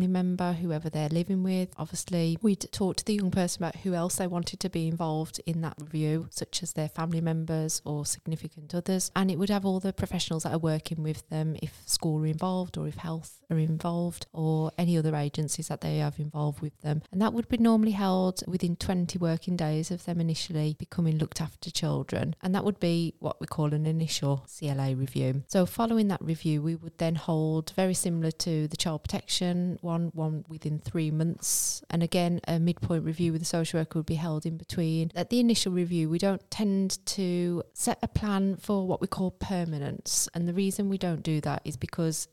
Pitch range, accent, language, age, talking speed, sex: 160-185 Hz, British, English, 30-49, 210 wpm, female